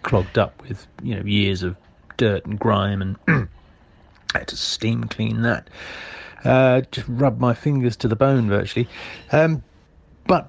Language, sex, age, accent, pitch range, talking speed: English, male, 40-59, British, 105-130 Hz, 160 wpm